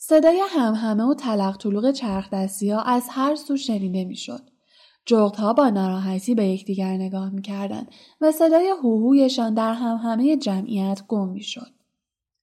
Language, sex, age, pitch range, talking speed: Persian, female, 10-29, 200-270 Hz, 140 wpm